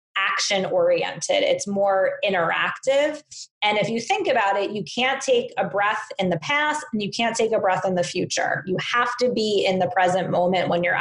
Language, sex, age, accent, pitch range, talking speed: English, female, 20-39, American, 185-235 Hz, 205 wpm